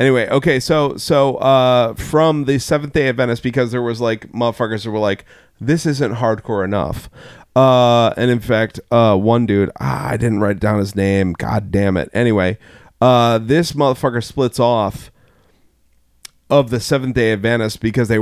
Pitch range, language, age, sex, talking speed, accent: 110-135 Hz, English, 40-59, male, 180 wpm, American